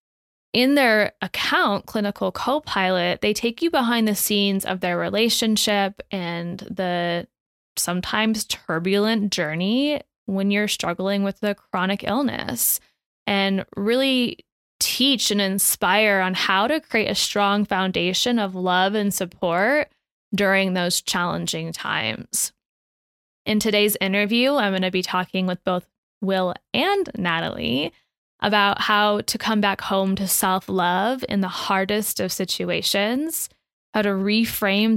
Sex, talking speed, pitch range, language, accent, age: female, 130 wpm, 185-220 Hz, English, American, 10-29